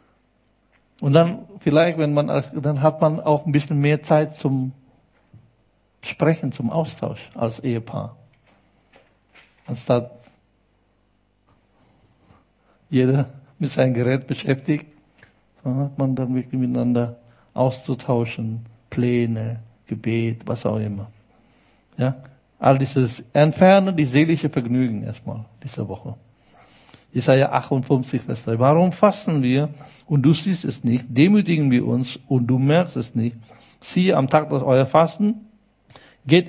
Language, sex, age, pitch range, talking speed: German, male, 60-79, 120-155 Hz, 125 wpm